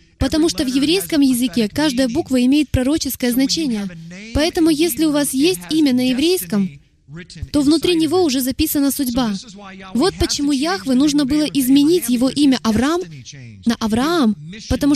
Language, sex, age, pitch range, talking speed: Russian, female, 20-39, 205-300 Hz, 145 wpm